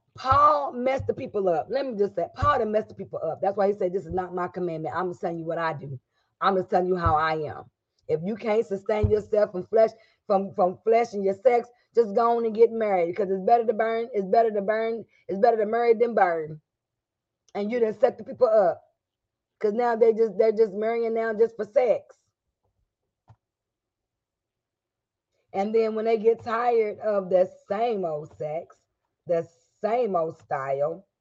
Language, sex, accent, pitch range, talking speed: English, female, American, 155-220 Hz, 200 wpm